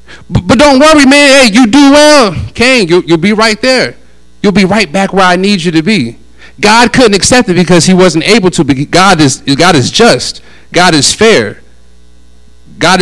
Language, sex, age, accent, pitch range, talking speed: English, male, 40-59, American, 120-195 Hz, 195 wpm